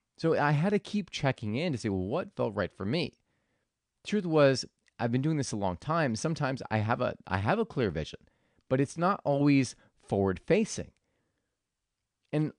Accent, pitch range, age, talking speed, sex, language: American, 105-160 Hz, 30-49, 195 wpm, male, English